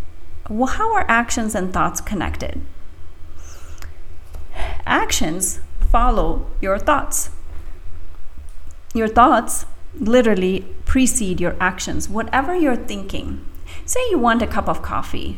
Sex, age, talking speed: female, 40-59, 105 wpm